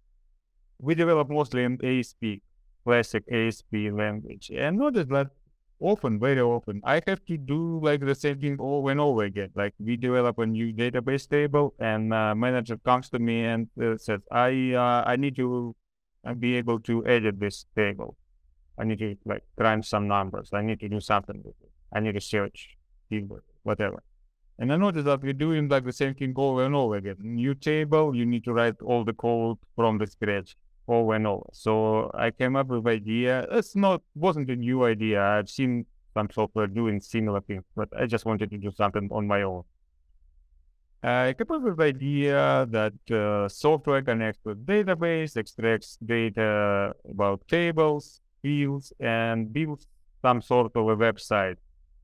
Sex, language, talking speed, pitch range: male, English, 180 wpm, 105-130 Hz